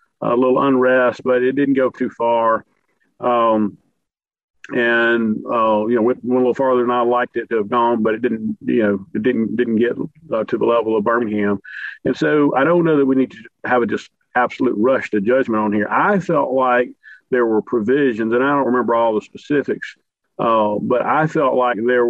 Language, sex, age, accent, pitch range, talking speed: English, male, 50-69, American, 115-140 Hz, 210 wpm